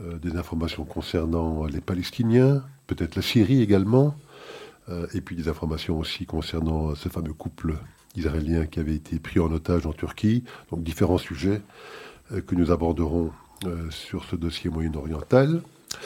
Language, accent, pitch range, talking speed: French, French, 85-105 Hz, 140 wpm